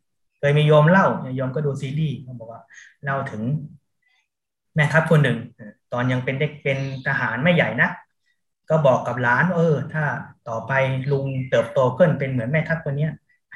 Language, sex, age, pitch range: Thai, male, 20-39, 125-155 Hz